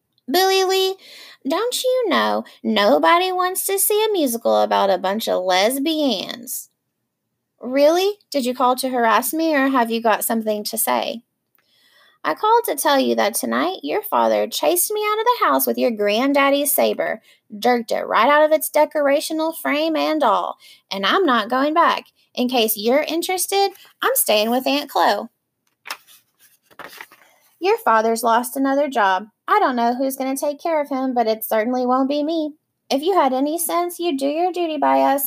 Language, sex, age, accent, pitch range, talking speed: English, female, 20-39, American, 225-330 Hz, 180 wpm